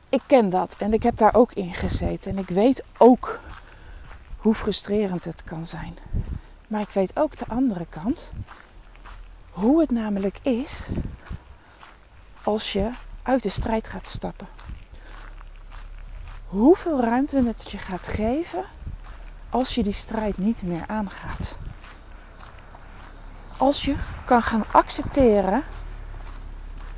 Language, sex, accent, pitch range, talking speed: Dutch, female, Dutch, 165-245 Hz, 120 wpm